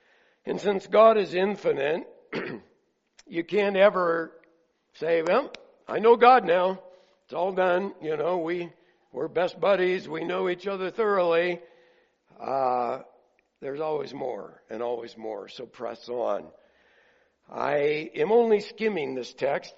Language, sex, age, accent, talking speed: English, male, 60-79, American, 135 wpm